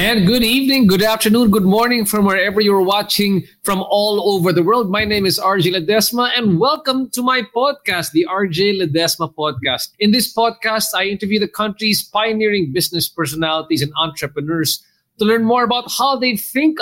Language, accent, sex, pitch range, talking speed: English, Filipino, male, 165-215 Hz, 175 wpm